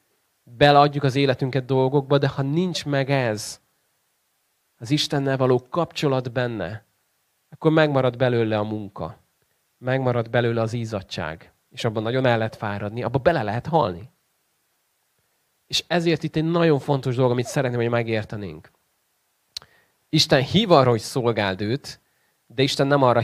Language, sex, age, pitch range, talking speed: Hungarian, male, 30-49, 115-155 Hz, 140 wpm